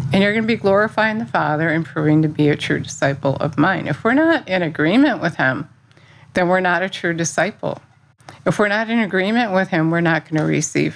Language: English